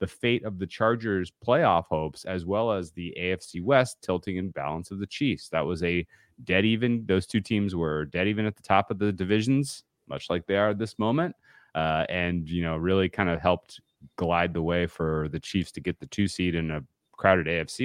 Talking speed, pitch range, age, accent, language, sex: 220 wpm, 80-100 Hz, 30-49, American, English, male